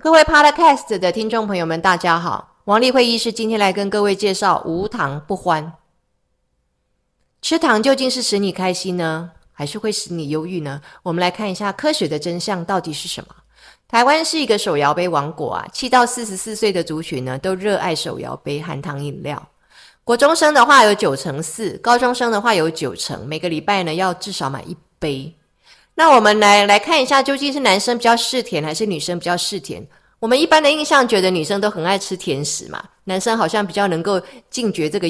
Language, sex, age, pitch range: Chinese, female, 30-49, 160-225 Hz